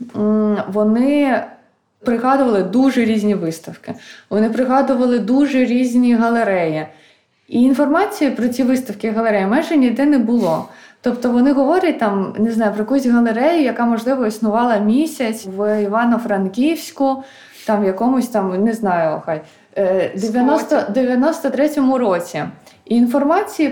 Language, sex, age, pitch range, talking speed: Ukrainian, female, 20-39, 210-270 Hz, 115 wpm